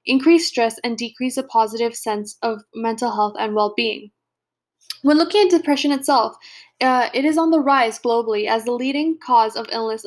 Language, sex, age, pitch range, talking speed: English, female, 10-29, 225-295 Hz, 180 wpm